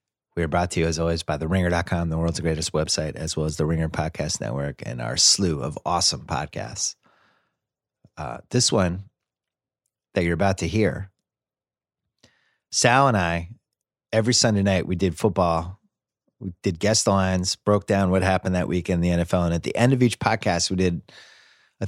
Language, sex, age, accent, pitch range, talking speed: English, male, 30-49, American, 85-115 Hz, 180 wpm